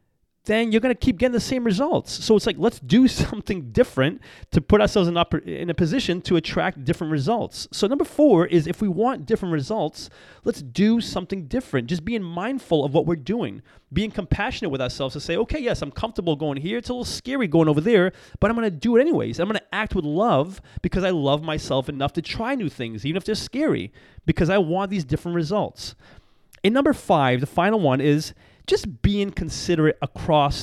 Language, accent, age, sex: English, American, 30-49, male